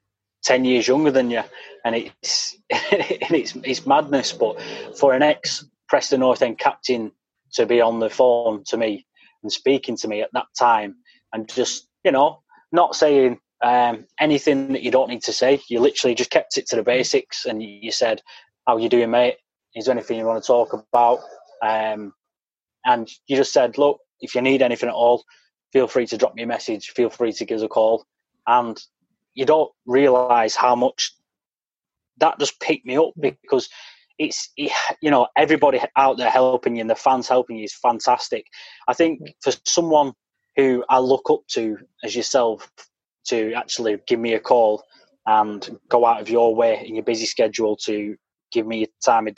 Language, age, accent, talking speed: English, 20-39, British, 190 wpm